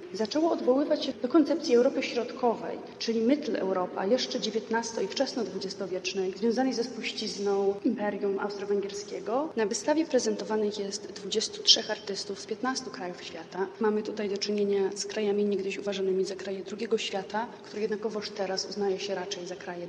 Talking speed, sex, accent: 155 wpm, female, native